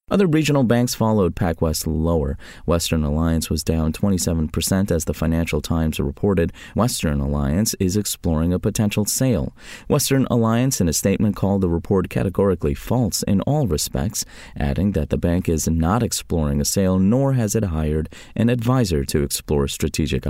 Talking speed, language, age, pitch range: 160 wpm, English, 30-49, 80-110 Hz